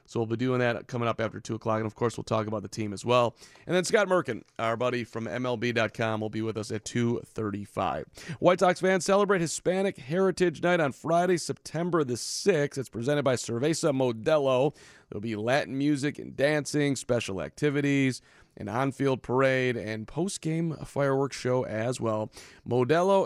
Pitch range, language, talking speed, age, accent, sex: 115-145 Hz, English, 180 wpm, 40-59, American, male